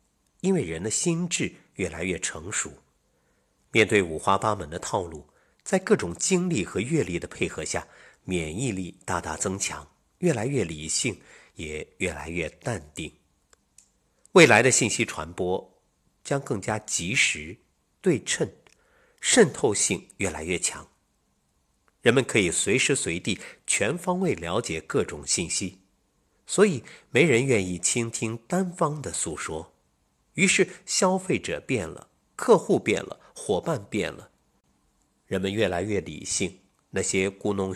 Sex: male